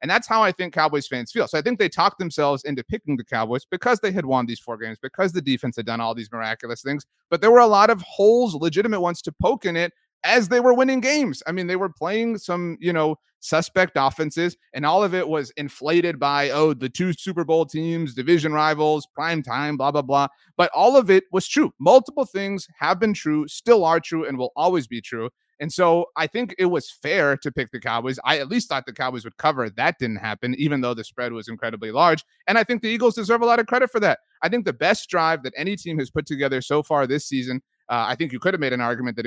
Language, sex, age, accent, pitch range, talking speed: English, male, 30-49, American, 135-190 Hz, 255 wpm